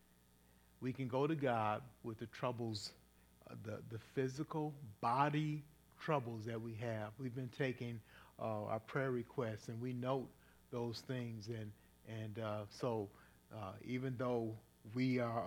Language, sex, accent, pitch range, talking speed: English, male, American, 110-135 Hz, 145 wpm